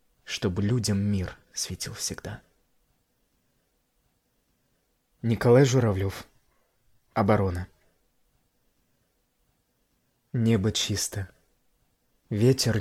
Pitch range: 100-125 Hz